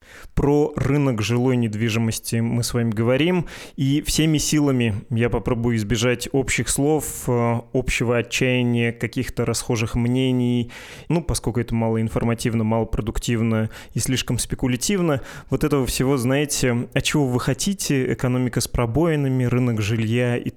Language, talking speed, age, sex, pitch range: Russian, 130 wpm, 20-39, male, 115-135 Hz